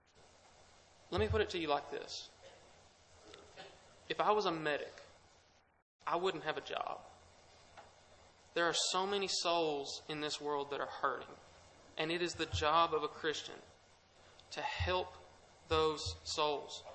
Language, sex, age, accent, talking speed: English, male, 20-39, American, 145 wpm